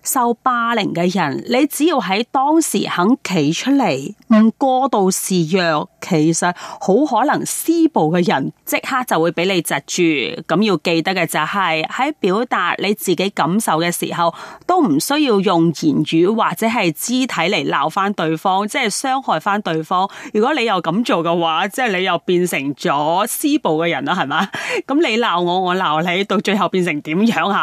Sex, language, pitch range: female, Chinese, 170-255 Hz